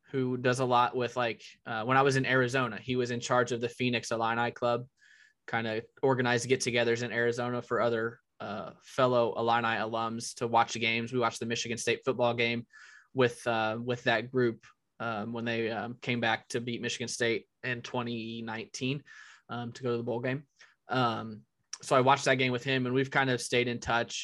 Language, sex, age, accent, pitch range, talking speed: English, male, 20-39, American, 115-135 Hz, 210 wpm